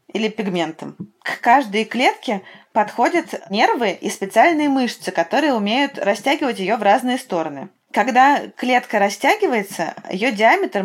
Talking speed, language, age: 120 wpm, Russian, 20-39